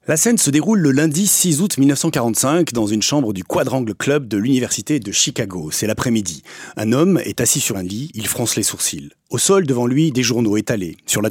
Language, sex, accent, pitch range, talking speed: French, male, French, 115-160 Hz, 220 wpm